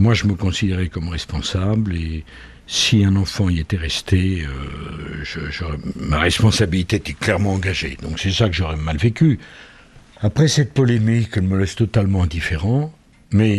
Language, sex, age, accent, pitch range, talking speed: French, male, 60-79, French, 80-110 Hz, 165 wpm